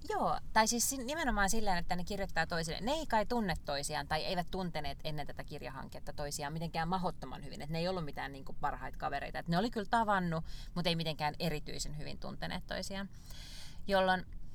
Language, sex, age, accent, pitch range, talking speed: Finnish, female, 30-49, native, 155-200 Hz, 185 wpm